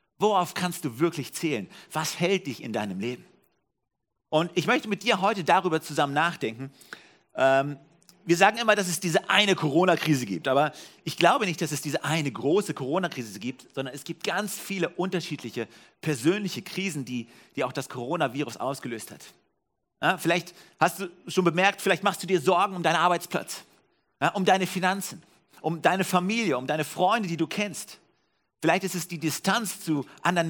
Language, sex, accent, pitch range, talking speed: German, male, German, 140-185 Hz, 170 wpm